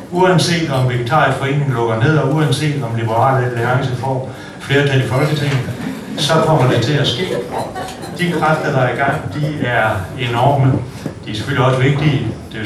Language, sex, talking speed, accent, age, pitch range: Danish, male, 175 wpm, native, 60-79, 110-140 Hz